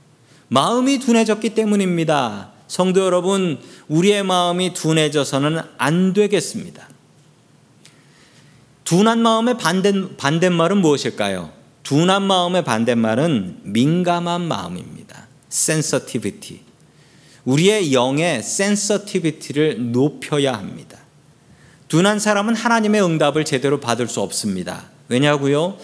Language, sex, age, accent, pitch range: Korean, male, 40-59, native, 140-200 Hz